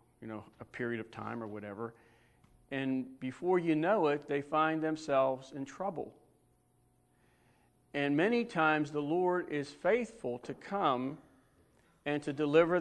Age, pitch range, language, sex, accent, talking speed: 50-69, 130-175 Hz, English, male, American, 140 wpm